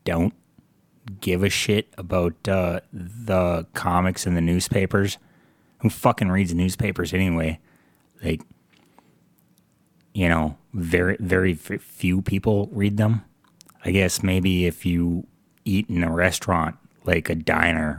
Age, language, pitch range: 30-49, English, 85-95 Hz